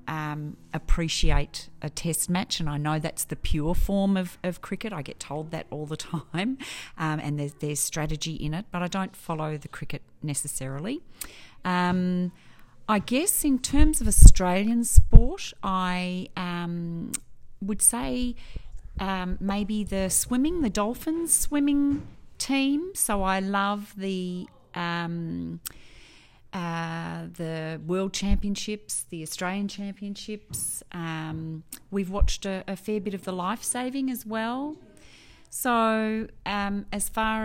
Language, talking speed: English, 135 wpm